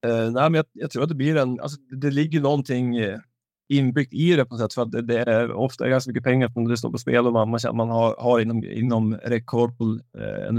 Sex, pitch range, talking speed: male, 110-125 Hz, 270 wpm